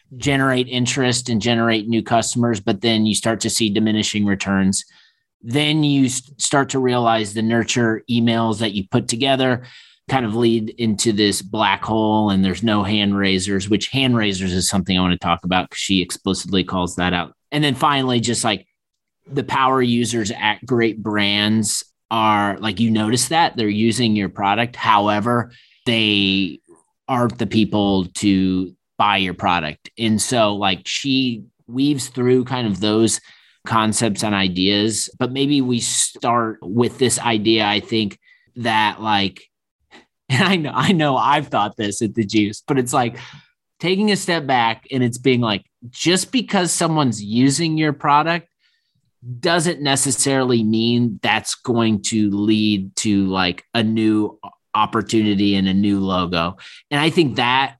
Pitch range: 105-125 Hz